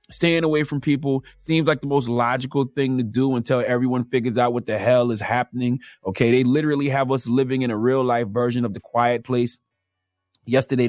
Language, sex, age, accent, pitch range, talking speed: English, male, 30-49, American, 120-150 Hz, 205 wpm